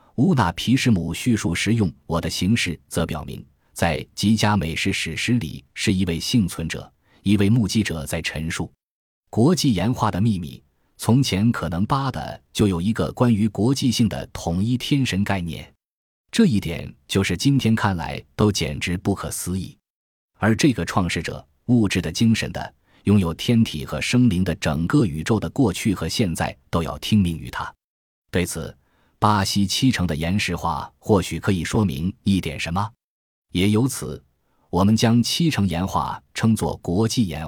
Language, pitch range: Chinese, 85-115 Hz